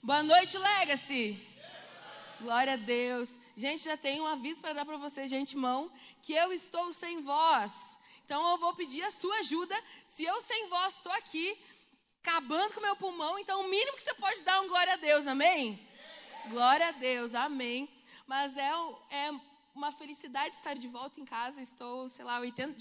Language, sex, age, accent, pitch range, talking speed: Portuguese, female, 20-39, Brazilian, 260-325 Hz, 185 wpm